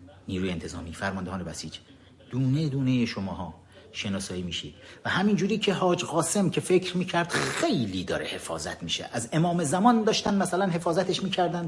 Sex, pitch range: male, 100-145 Hz